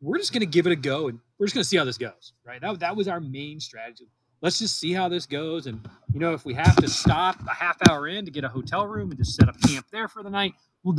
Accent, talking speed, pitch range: American, 315 wpm, 130-170 Hz